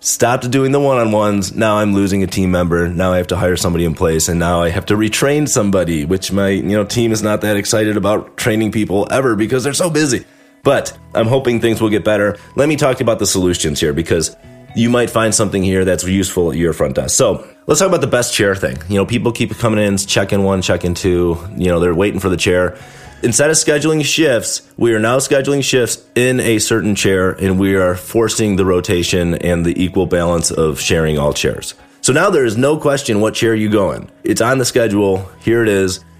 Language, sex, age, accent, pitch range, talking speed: English, male, 30-49, American, 90-120 Hz, 230 wpm